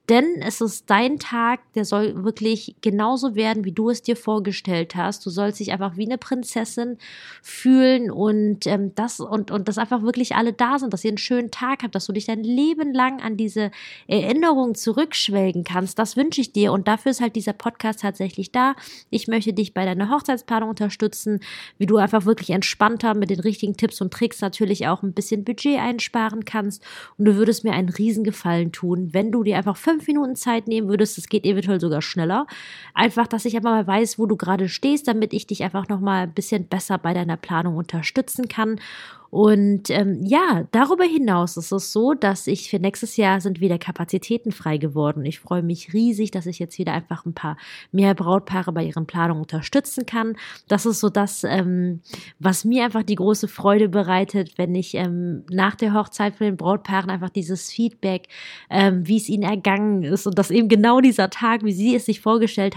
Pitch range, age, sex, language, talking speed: 190-230 Hz, 20-39, female, German, 205 wpm